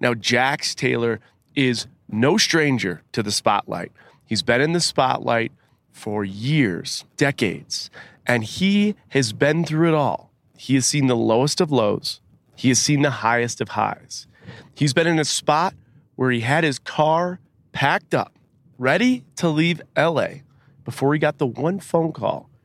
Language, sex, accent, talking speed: English, male, American, 160 wpm